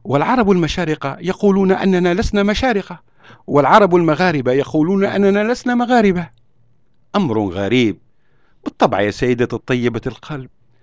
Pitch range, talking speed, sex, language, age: 120-175 Hz, 105 wpm, male, Arabic, 60-79